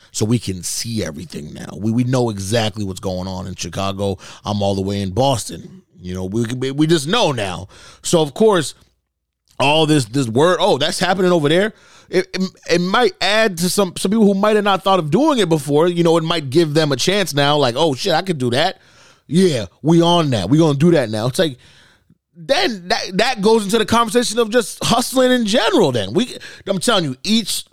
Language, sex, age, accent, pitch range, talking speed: English, male, 30-49, American, 115-185 Hz, 225 wpm